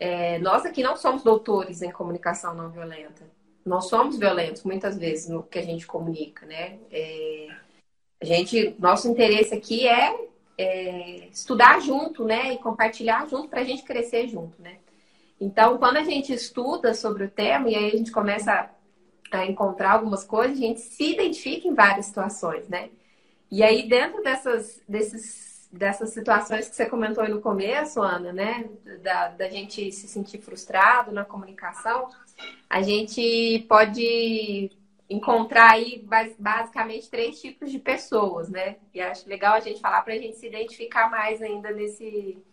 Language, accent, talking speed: Portuguese, Brazilian, 165 wpm